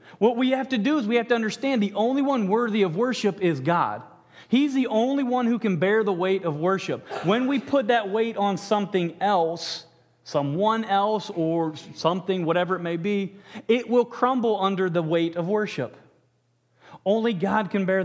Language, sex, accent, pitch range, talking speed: English, male, American, 170-225 Hz, 190 wpm